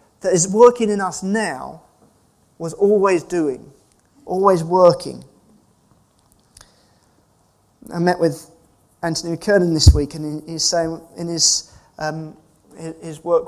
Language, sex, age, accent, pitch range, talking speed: English, male, 30-49, British, 150-195 Hz, 115 wpm